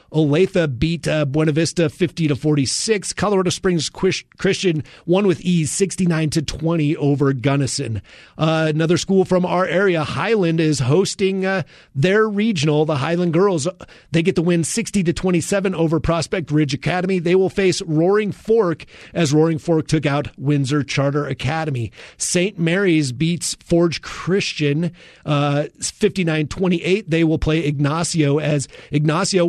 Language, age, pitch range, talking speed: English, 30-49, 150-180 Hz, 140 wpm